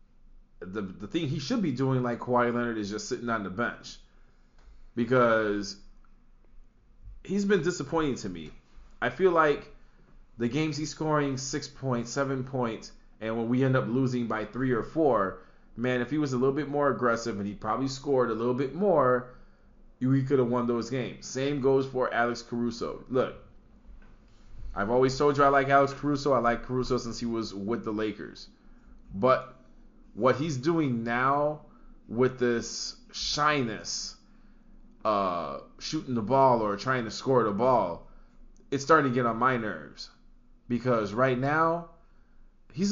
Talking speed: 165 wpm